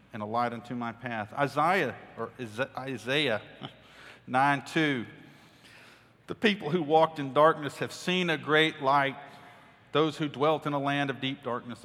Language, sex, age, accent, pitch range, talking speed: English, male, 40-59, American, 130-175 Hz, 155 wpm